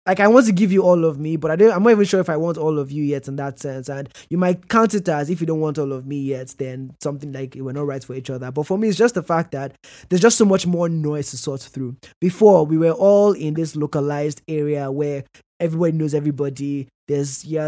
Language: English